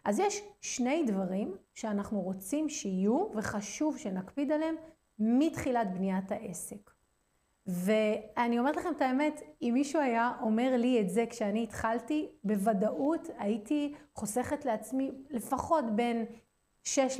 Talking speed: 120 wpm